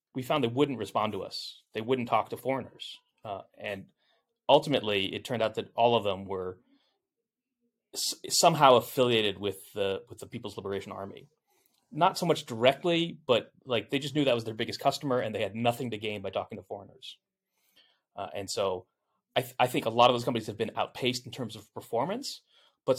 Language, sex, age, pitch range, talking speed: English, male, 30-49, 110-140 Hz, 200 wpm